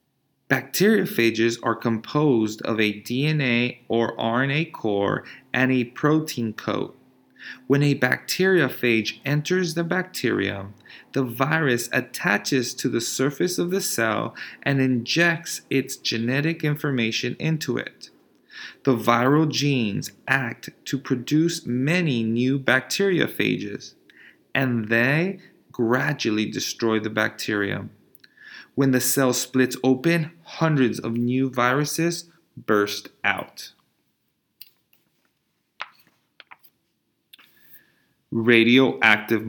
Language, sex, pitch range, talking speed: English, male, 115-155 Hz, 95 wpm